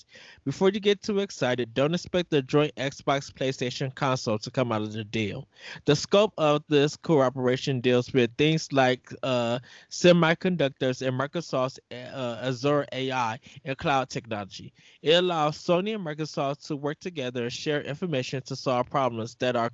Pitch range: 120-150 Hz